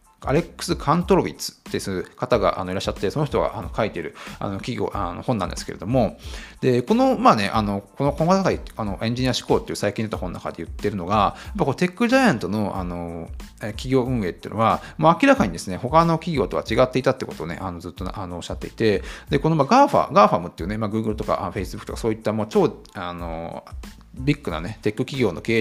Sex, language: male, Japanese